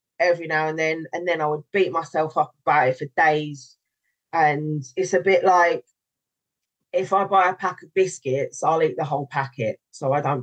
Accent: British